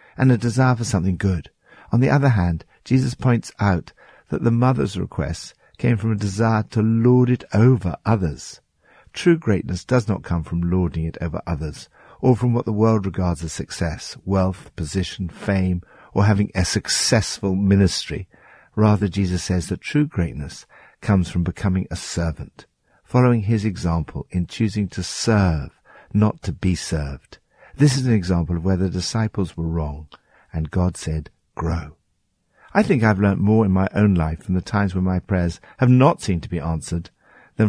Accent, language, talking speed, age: British, English, 175 wpm, 60-79